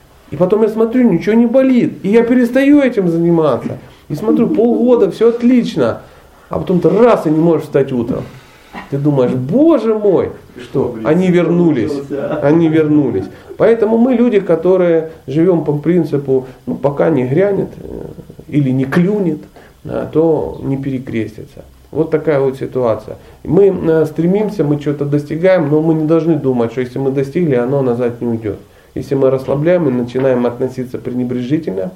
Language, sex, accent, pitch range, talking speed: Russian, male, native, 120-170 Hz, 155 wpm